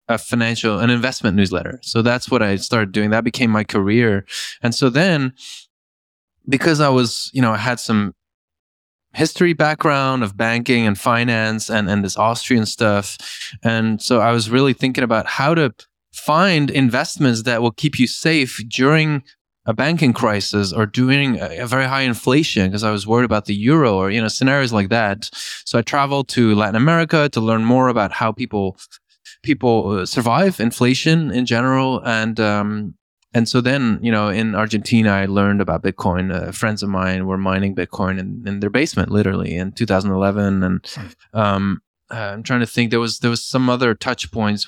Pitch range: 105-130 Hz